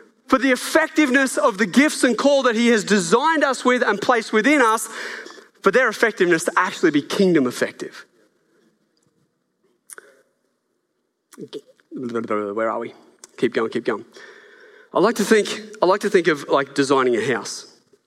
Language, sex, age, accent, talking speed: English, male, 20-39, Australian, 155 wpm